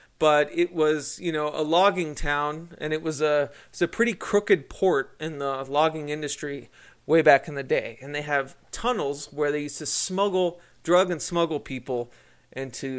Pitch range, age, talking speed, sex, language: 140-175 Hz, 30-49, 190 wpm, male, English